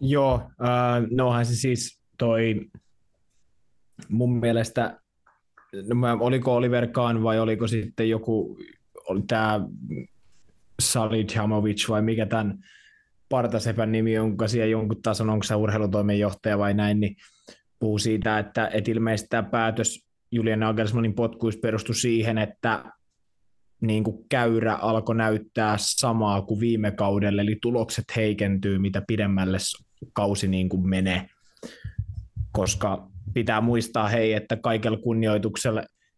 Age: 20-39